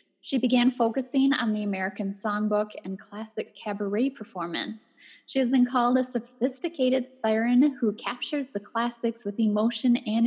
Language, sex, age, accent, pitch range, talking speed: English, female, 10-29, American, 210-250 Hz, 145 wpm